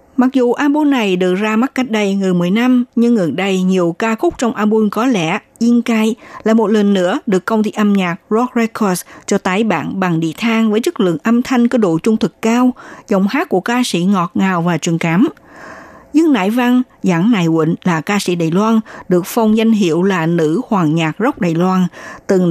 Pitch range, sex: 185-245 Hz, female